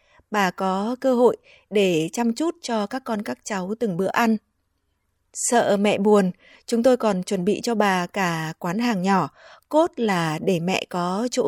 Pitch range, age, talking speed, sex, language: 180-240 Hz, 20-39, 185 wpm, female, Vietnamese